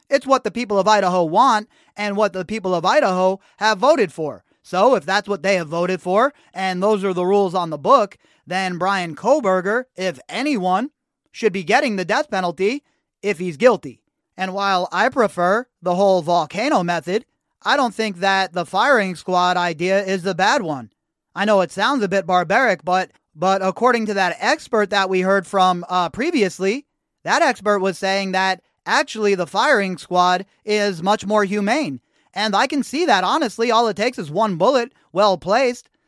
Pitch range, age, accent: 185-220 Hz, 30-49, American